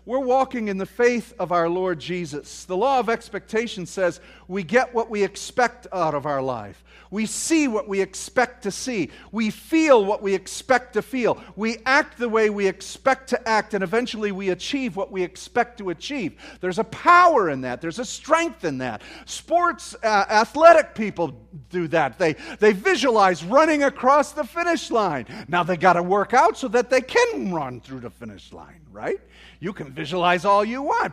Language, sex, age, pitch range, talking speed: English, male, 50-69, 185-255 Hz, 195 wpm